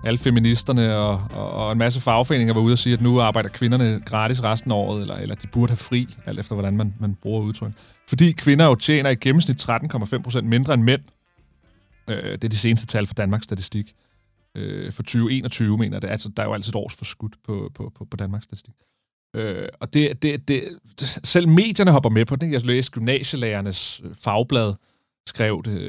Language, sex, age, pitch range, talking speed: Danish, male, 30-49, 105-130 Hz, 205 wpm